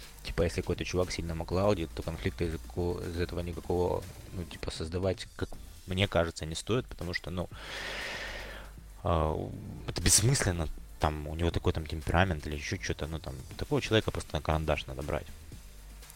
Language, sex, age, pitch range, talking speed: Russian, male, 20-39, 80-95 Hz, 170 wpm